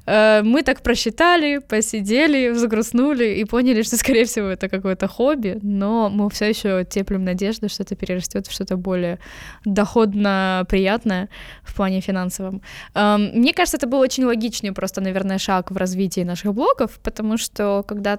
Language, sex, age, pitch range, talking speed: Russian, female, 10-29, 195-240 Hz, 150 wpm